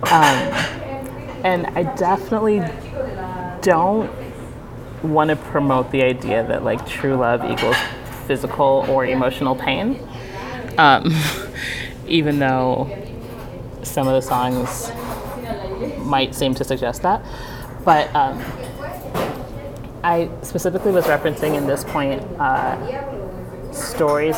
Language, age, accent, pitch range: English, 30-49, American, 125-150 Hz